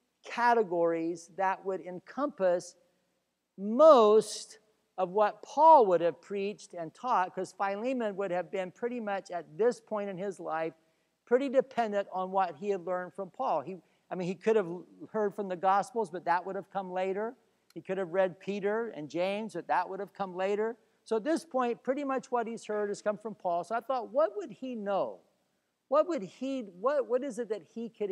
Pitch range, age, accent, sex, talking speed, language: 180-235 Hz, 50-69, American, male, 200 wpm, English